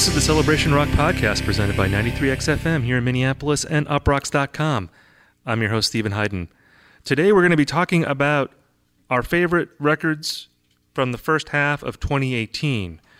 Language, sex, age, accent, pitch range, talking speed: English, male, 30-49, American, 105-140 Hz, 160 wpm